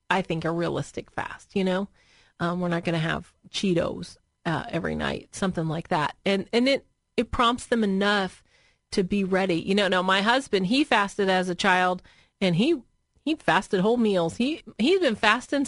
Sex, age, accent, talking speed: female, 30-49, American, 190 wpm